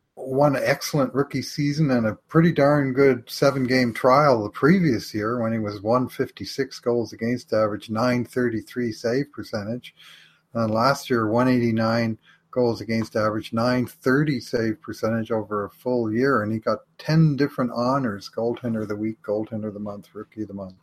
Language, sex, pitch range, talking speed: English, male, 110-130 Hz, 160 wpm